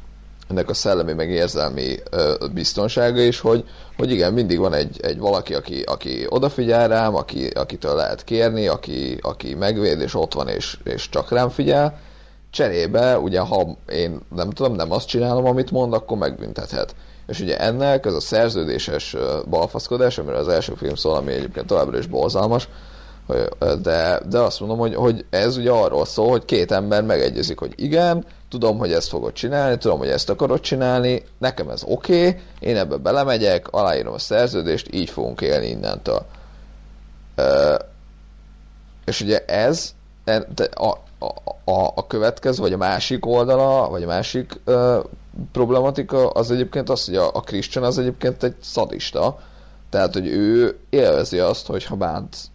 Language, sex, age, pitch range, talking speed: Hungarian, male, 30-49, 90-140 Hz, 160 wpm